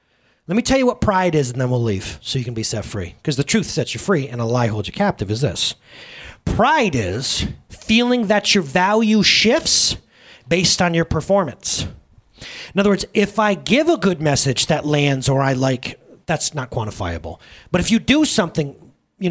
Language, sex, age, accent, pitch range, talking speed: English, male, 30-49, American, 145-210 Hz, 200 wpm